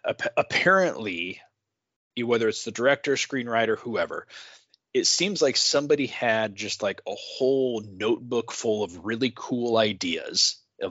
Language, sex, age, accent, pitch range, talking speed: English, male, 20-39, American, 105-145 Hz, 125 wpm